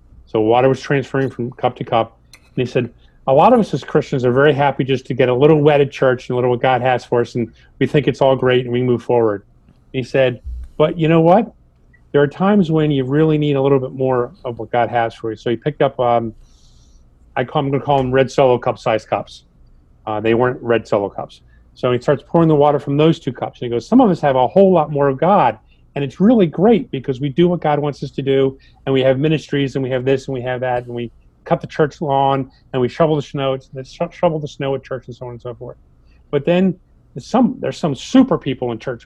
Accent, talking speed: American, 270 wpm